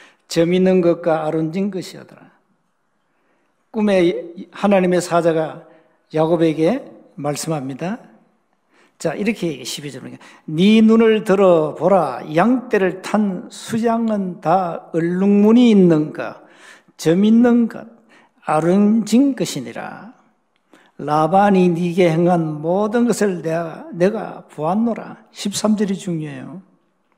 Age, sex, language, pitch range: 60-79, male, Korean, 175-225 Hz